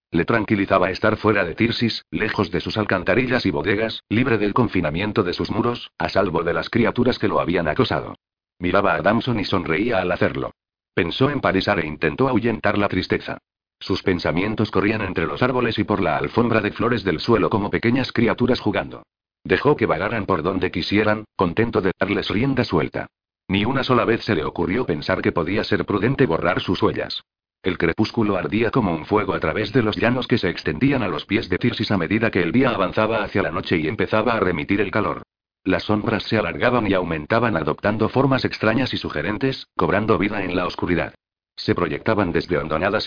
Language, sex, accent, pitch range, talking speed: Spanish, male, Spanish, 95-115 Hz, 195 wpm